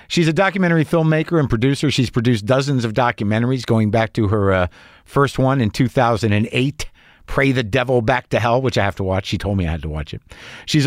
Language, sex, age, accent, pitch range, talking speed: English, male, 50-69, American, 110-150 Hz, 220 wpm